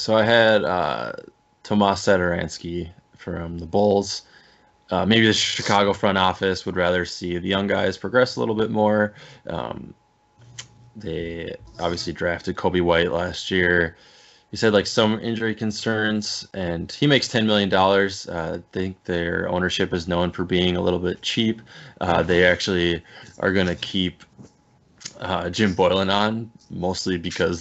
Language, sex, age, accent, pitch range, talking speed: English, male, 20-39, American, 85-105 Hz, 150 wpm